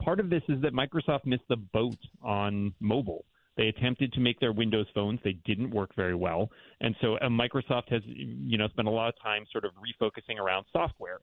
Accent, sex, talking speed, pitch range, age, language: American, male, 215 wpm, 100-125 Hz, 30-49, English